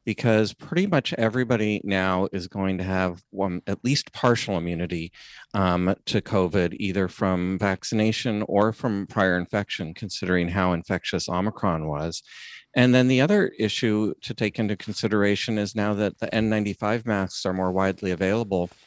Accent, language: American, English